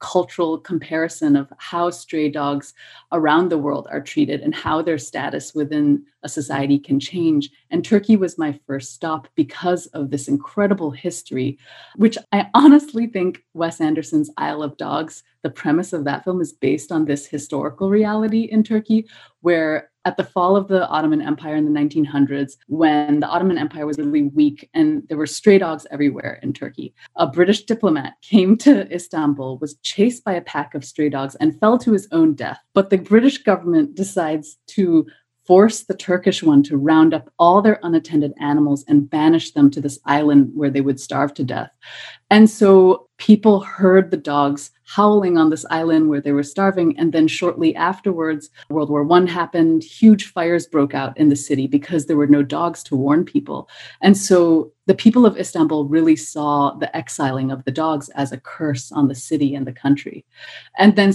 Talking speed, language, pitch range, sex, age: 185 wpm, English, 145-195 Hz, female, 30-49